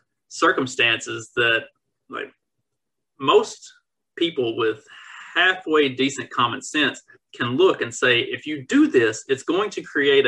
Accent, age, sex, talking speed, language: American, 30-49, male, 130 wpm, English